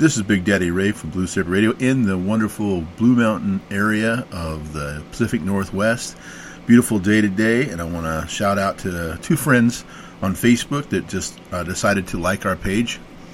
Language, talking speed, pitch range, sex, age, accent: English, 185 wpm, 95-115 Hz, male, 40-59, American